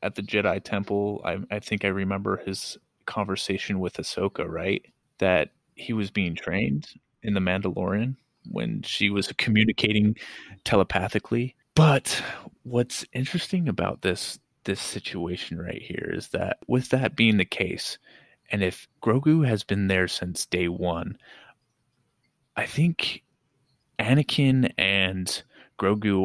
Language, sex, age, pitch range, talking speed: English, male, 30-49, 95-120 Hz, 130 wpm